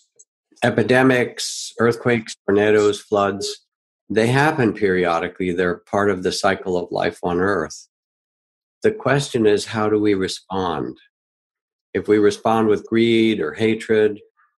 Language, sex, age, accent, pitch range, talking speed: English, male, 60-79, American, 95-125 Hz, 125 wpm